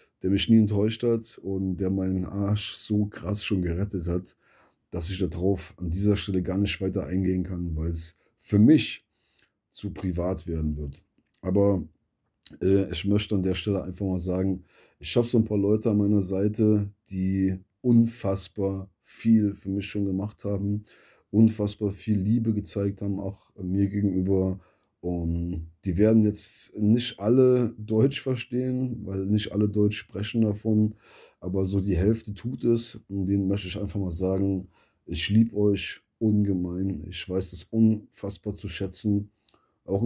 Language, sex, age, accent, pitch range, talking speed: German, male, 20-39, German, 95-110 Hz, 160 wpm